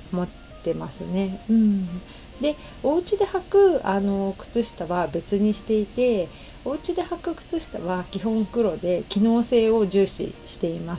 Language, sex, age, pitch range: Japanese, female, 40-59, 190-265 Hz